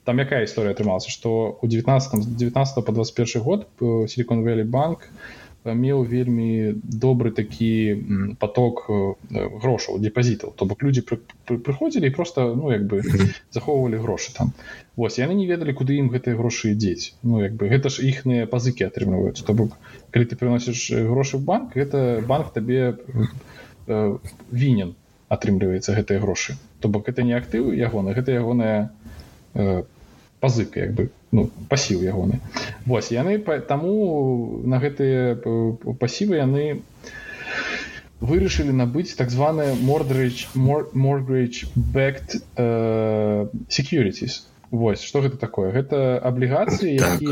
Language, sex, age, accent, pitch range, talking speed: Ukrainian, male, 20-39, native, 110-130 Hz, 100 wpm